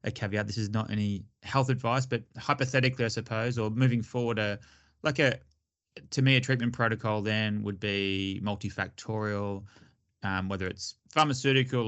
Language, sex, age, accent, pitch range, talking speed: English, male, 20-39, Australian, 100-115 Hz, 155 wpm